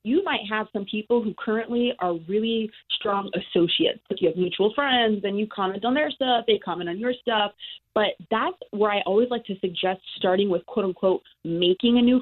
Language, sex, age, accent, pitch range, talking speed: English, female, 20-39, American, 195-240 Hz, 205 wpm